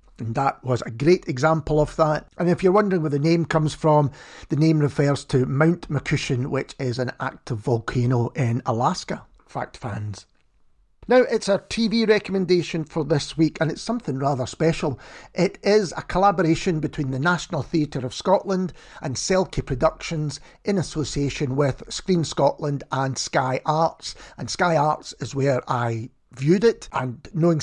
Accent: British